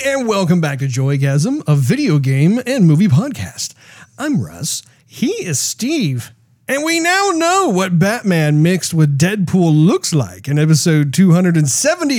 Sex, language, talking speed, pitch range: male, English, 150 wpm, 135-210 Hz